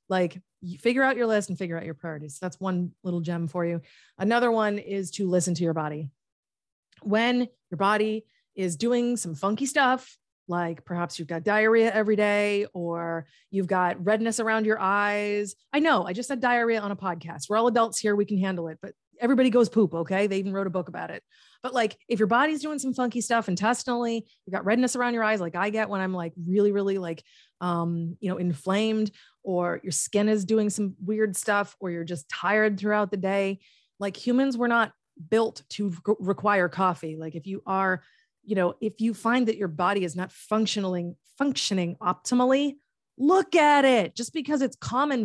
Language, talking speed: English, 200 wpm